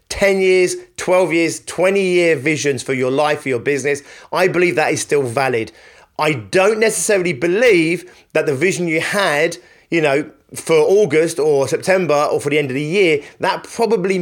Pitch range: 130-170 Hz